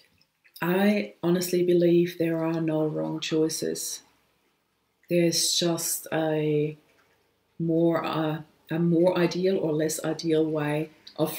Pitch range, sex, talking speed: 150-170 Hz, female, 110 wpm